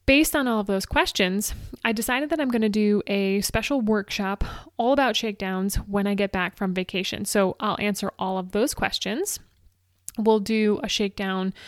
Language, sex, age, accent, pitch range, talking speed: English, female, 20-39, American, 195-240 Hz, 185 wpm